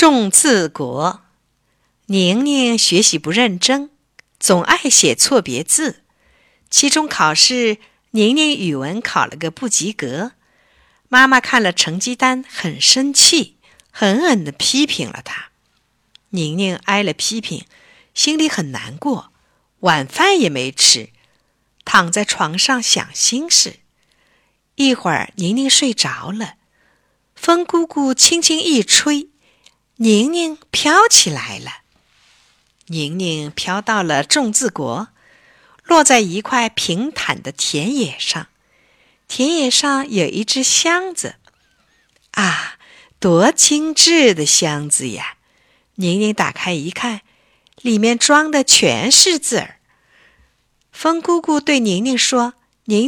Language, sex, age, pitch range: Chinese, female, 50-69, 195-300 Hz